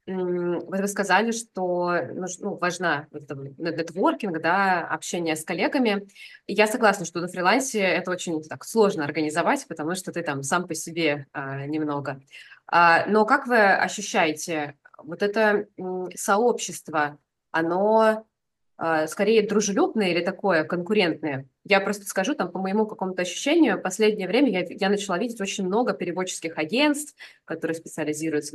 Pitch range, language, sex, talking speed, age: 170-215 Hz, Russian, female, 125 wpm, 20-39